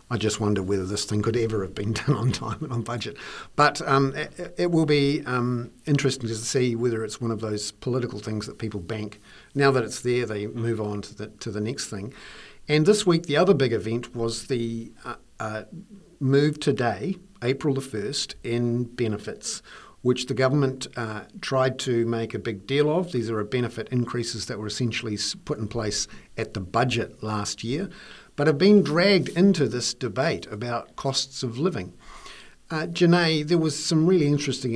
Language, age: English, 50-69